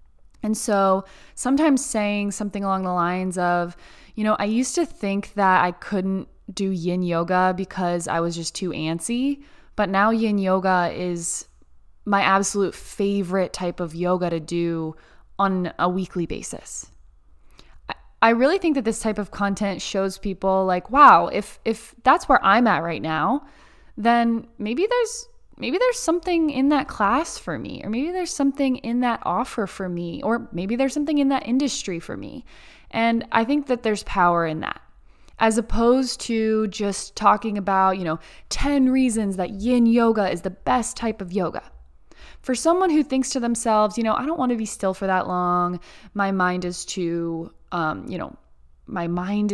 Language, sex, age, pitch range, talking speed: English, female, 20-39, 180-240 Hz, 180 wpm